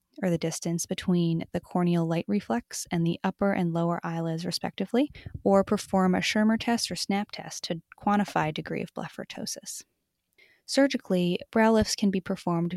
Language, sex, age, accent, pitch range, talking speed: English, female, 20-39, American, 170-205 Hz, 160 wpm